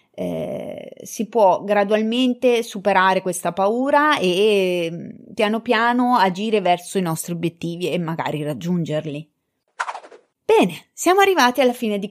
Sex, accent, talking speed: female, native, 125 wpm